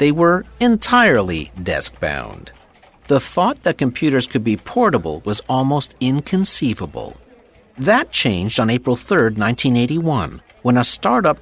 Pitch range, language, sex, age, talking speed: 110-155 Hz, English, male, 50-69, 120 wpm